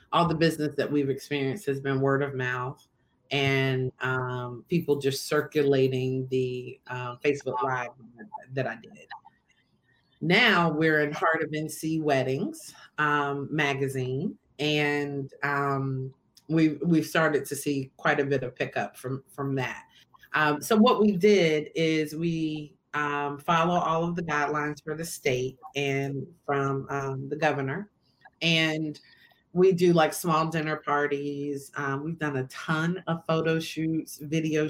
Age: 30-49